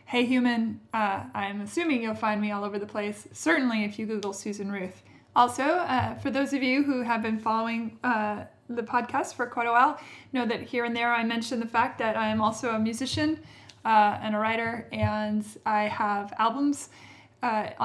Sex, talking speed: female, 200 wpm